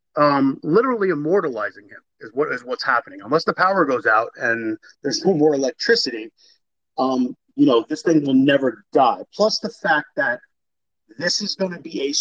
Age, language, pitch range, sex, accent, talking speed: 30-49, English, 130-180 Hz, male, American, 180 wpm